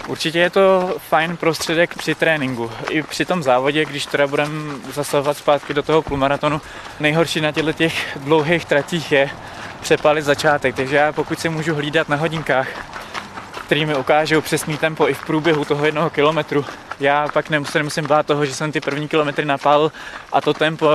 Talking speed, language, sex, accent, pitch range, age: 175 wpm, Czech, male, native, 140-160 Hz, 20-39